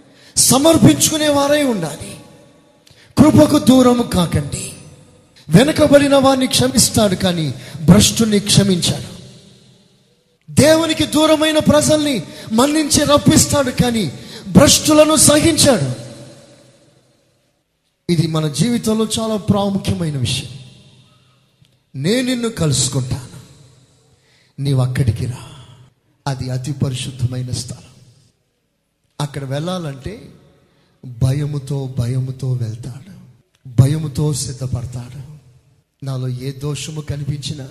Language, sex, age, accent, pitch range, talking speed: Telugu, male, 30-49, native, 130-170 Hz, 60 wpm